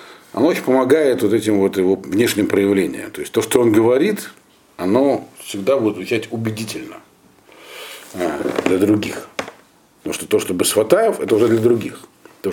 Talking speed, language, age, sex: 165 wpm, Russian, 50-69, male